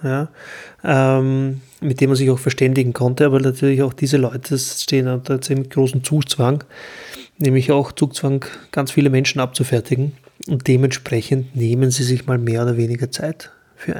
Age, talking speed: 30-49, 160 wpm